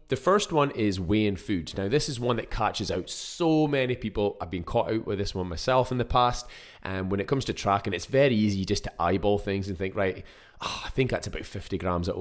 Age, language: 20-39, English